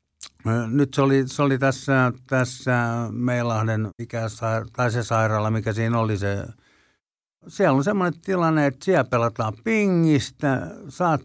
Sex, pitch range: male, 115-150 Hz